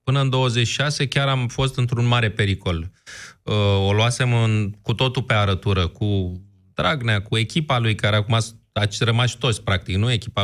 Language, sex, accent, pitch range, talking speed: Romanian, male, native, 105-135 Hz, 160 wpm